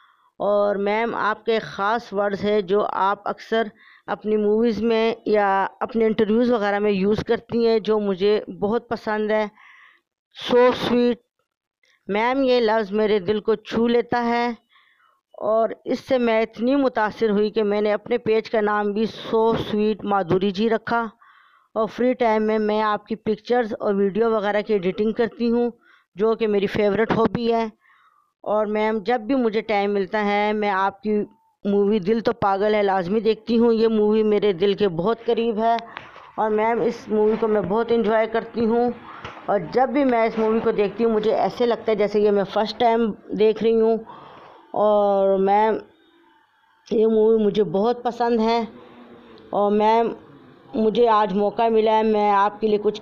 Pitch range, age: 210-230 Hz, 20-39